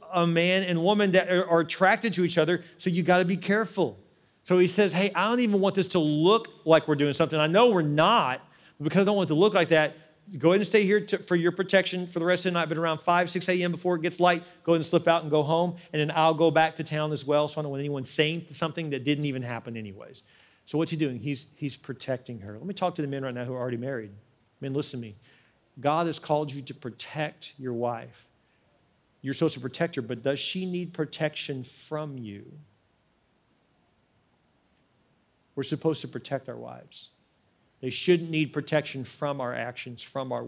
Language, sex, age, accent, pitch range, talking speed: English, male, 40-59, American, 120-165 Hz, 235 wpm